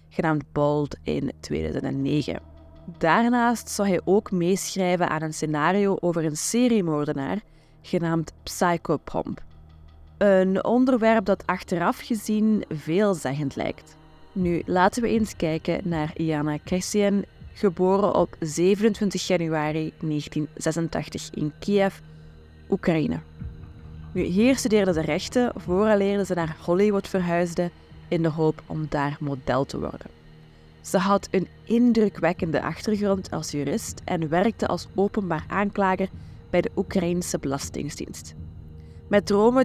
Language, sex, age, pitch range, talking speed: Dutch, female, 20-39, 150-200 Hz, 115 wpm